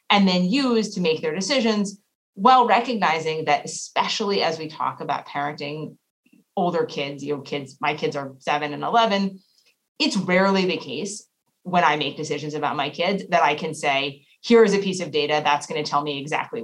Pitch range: 150-200 Hz